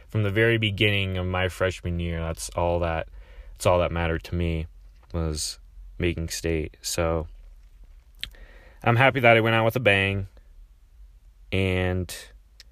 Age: 20-39